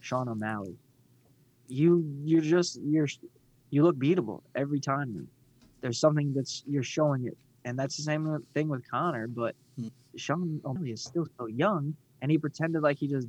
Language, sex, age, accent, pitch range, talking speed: English, male, 20-39, American, 135-180 Hz, 165 wpm